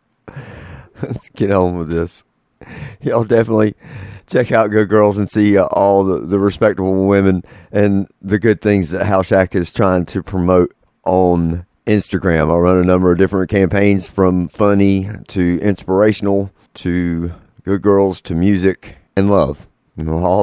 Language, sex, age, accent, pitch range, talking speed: English, male, 50-69, American, 95-115 Hz, 155 wpm